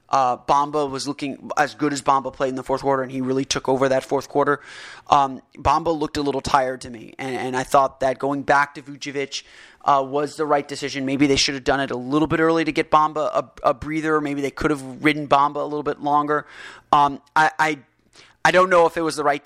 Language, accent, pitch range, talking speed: English, American, 135-150 Hz, 250 wpm